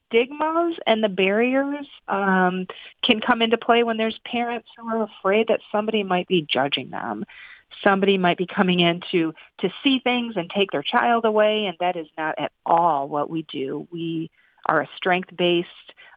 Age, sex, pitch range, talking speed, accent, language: 40-59, female, 160-205 Hz, 180 wpm, American, English